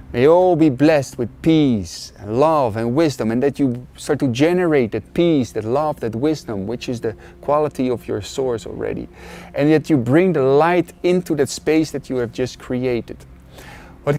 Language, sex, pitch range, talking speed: English, male, 115-155 Hz, 195 wpm